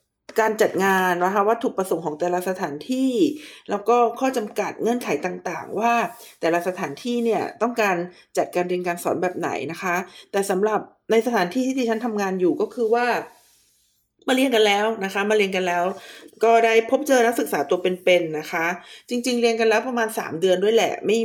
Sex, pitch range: female, 180-235 Hz